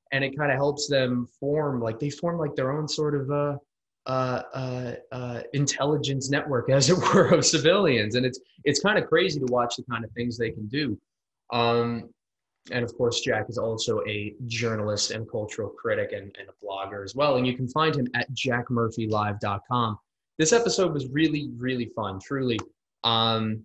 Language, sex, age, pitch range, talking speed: English, male, 20-39, 120-145 Hz, 190 wpm